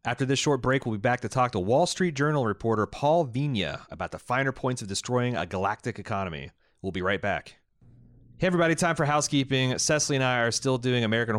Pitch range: 95-125 Hz